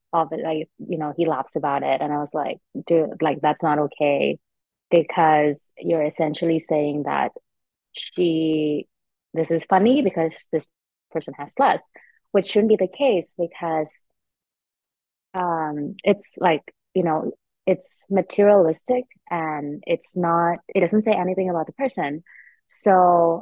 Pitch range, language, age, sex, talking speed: 160-195 Hz, English, 20-39, female, 145 wpm